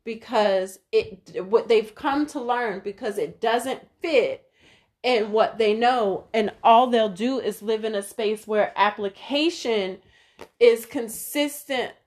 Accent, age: American, 30-49